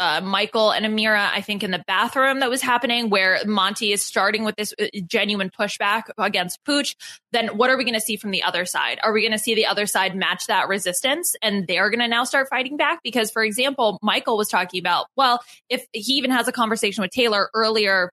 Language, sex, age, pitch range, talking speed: English, female, 20-39, 190-240 Hz, 230 wpm